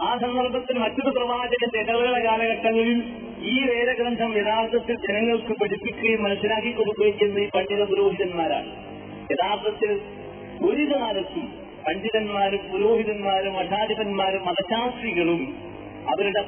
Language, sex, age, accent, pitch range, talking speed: Malayalam, male, 30-49, native, 185-235 Hz, 85 wpm